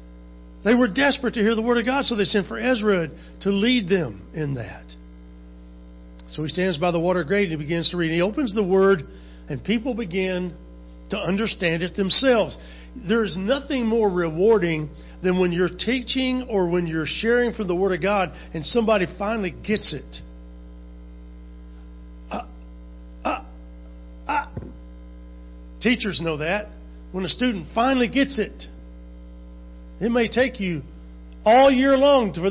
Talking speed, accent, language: 155 wpm, American, English